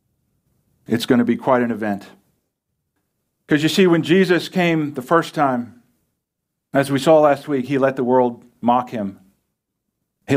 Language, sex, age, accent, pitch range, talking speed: English, male, 50-69, American, 110-140 Hz, 160 wpm